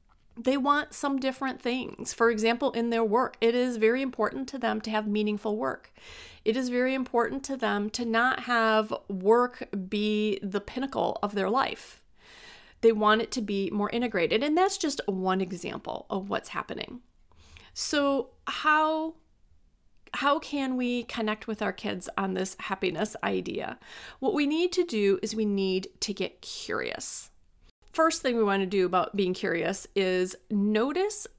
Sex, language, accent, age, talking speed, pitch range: female, English, American, 30-49, 165 wpm, 200-260 Hz